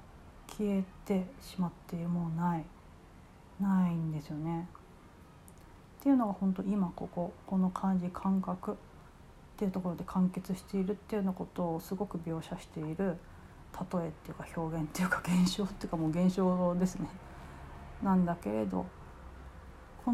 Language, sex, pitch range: Japanese, female, 170-225 Hz